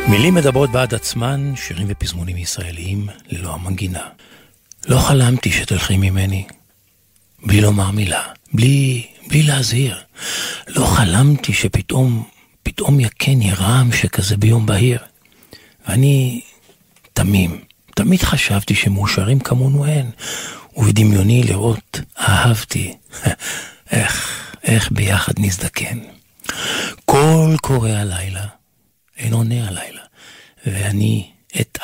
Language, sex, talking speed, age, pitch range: Hebrew, male, 95 wpm, 50-69, 105-130 Hz